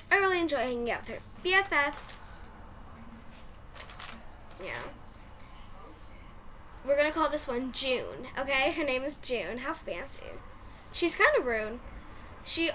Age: 10-29